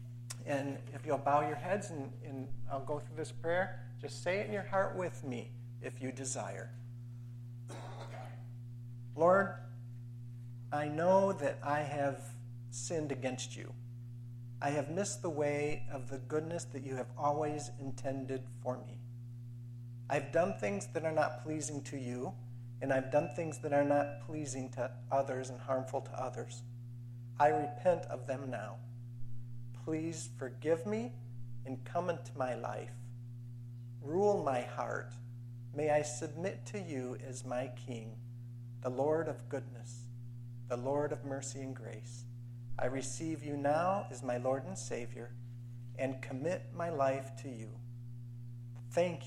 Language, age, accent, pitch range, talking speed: English, 50-69, American, 120-140 Hz, 145 wpm